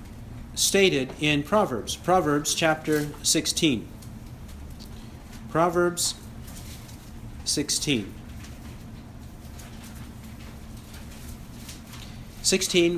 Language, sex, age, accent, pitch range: English, male, 50-69, American, 145-190 Hz